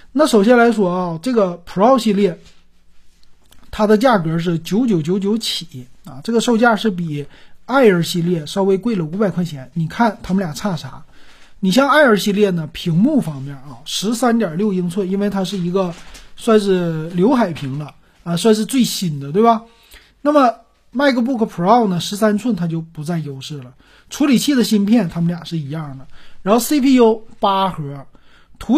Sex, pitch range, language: male, 160-230 Hz, Chinese